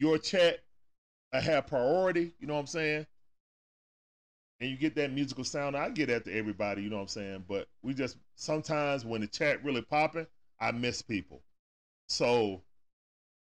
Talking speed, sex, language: 175 wpm, male, English